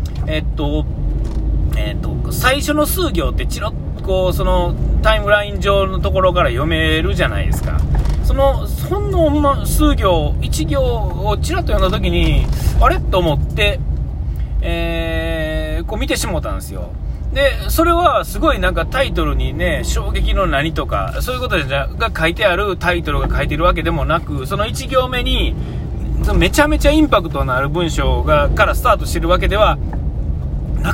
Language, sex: Japanese, male